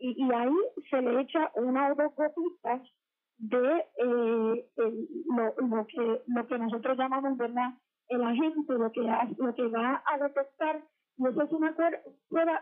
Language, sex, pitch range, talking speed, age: Spanish, female, 245-310 Hz, 170 wpm, 40-59